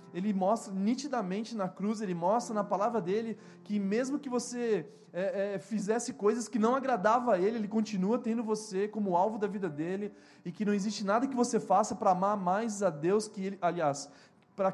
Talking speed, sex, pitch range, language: 200 wpm, male, 190-255 Hz, Portuguese